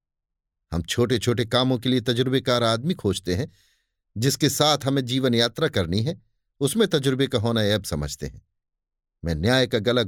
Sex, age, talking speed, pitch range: male, 50-69, 165 wpm, 100-130 Hz